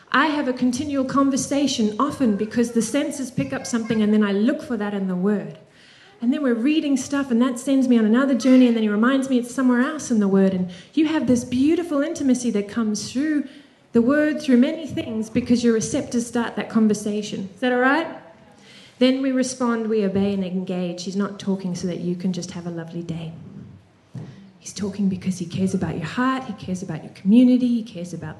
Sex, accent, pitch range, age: female, Australian, 195-255 Hz, 30-49